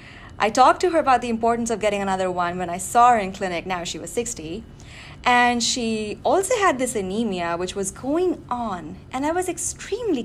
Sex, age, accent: female, 20-39, Indian